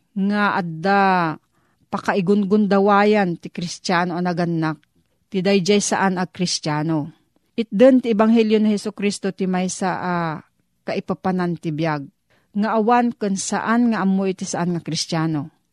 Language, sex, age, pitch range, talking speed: Filipino, female, 40-59, 175-215 Hz, 135 wpm